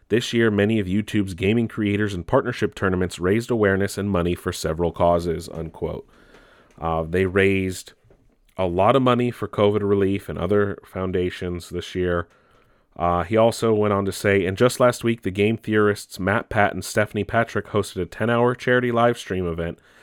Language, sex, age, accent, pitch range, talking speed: English, male, 30-49, American, 90-120 Hz, 180 wpm